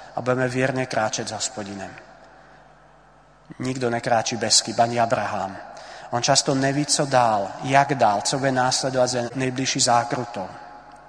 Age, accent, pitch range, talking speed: 30-49, native, 115-130 Hz, 130 wpm